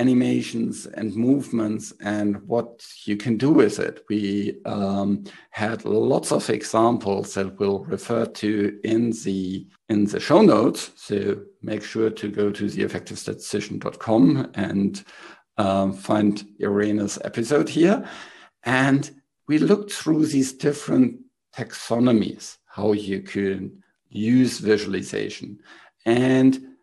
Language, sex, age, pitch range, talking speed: English, male, 60-79, 105-135 Hz, 120 wpm